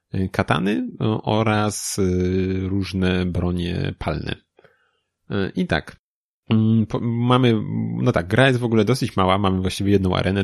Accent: native